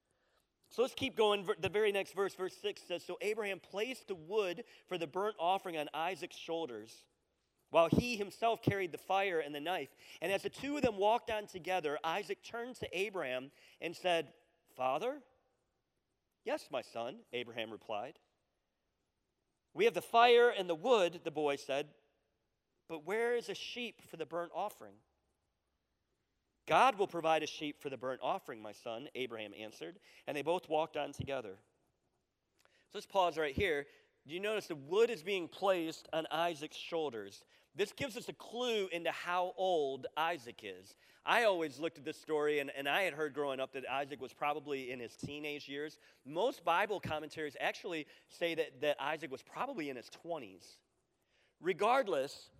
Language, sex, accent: English, male, American